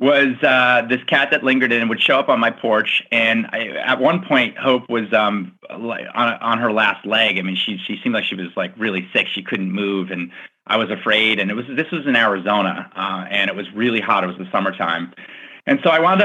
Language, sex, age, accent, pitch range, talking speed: English, male, 30-49, American, 105-130 Hz, 240 wpm